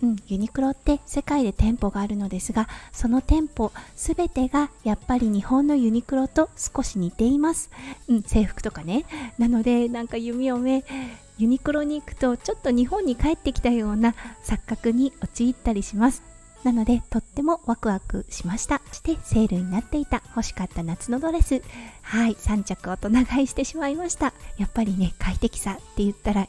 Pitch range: 205-265 Hz